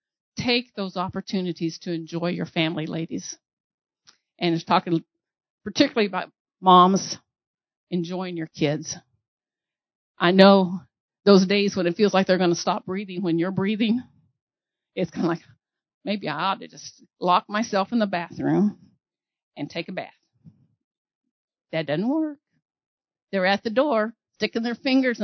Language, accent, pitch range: English, American, 180-235 Hz